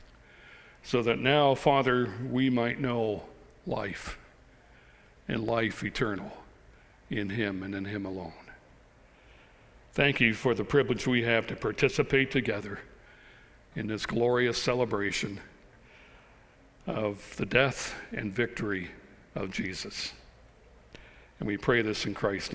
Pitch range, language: 105-135 Hz, English